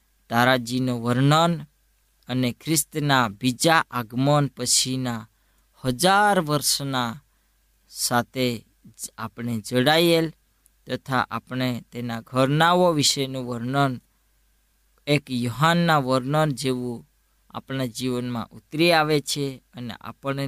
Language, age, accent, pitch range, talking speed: Gujarati, 20-39, native, 120-155 Hz, 75 wpm